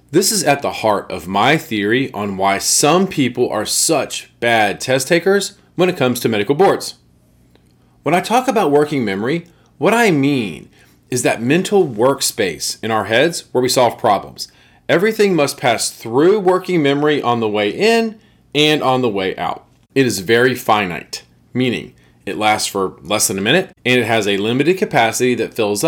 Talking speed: 180 wpm